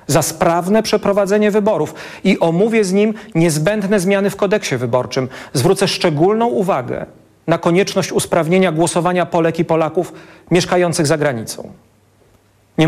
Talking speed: 125 wpm